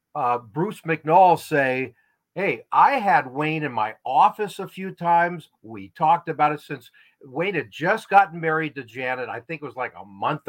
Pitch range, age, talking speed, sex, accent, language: 130-165 Hz, 50-69, 190 wpm, male, American, English